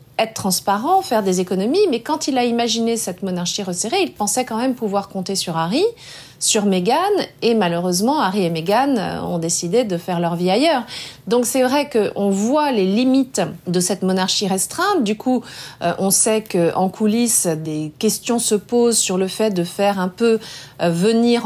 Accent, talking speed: French, 180 wpm